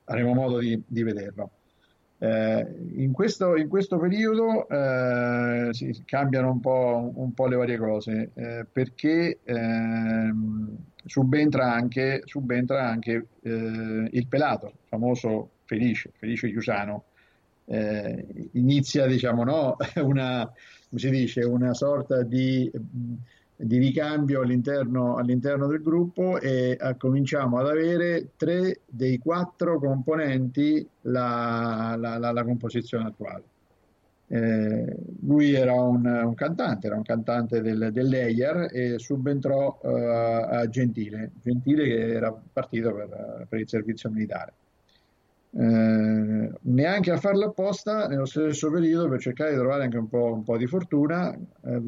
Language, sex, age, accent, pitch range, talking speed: Italian, male, 50-69, native, 115-140 Hz, 125 wpm